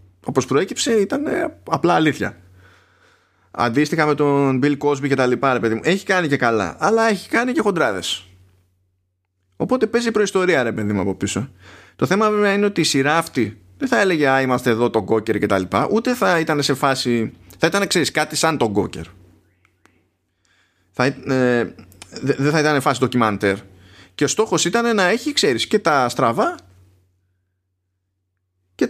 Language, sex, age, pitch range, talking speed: Greek, male, 20-39, 95-155 Hz, 165 wpm